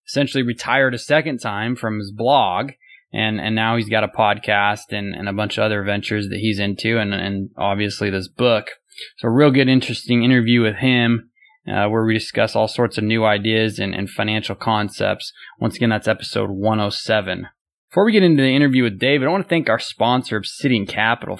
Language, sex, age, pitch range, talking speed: English, male, 20-39, 105-135 Hz, 200 wpm